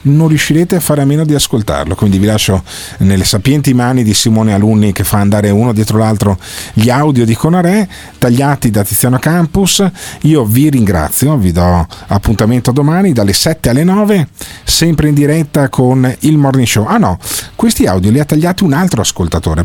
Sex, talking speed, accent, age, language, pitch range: male, 180 wpm, native, 40-59, Italian, 105-150 Hz